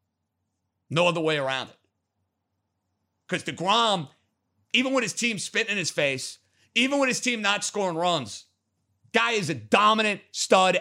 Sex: male